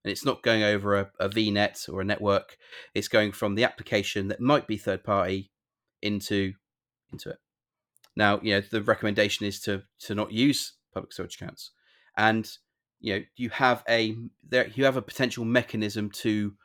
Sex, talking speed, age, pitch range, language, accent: male, 175 wpm, 30-49, 100-115 Hz, English, British